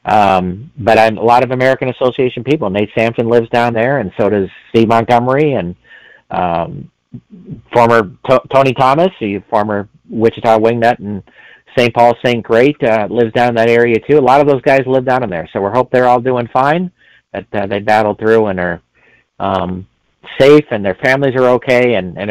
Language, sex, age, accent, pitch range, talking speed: English, male, 40-59, American, 110-145 Hz, 195 wpm